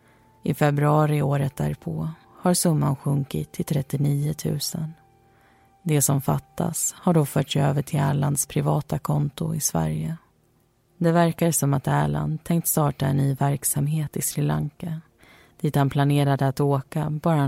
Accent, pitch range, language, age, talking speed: native, 135-155 Hz, Swedish, 30-49, 145 wpm